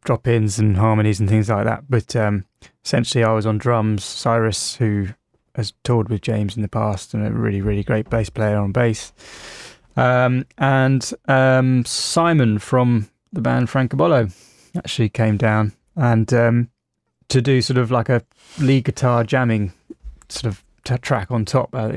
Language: English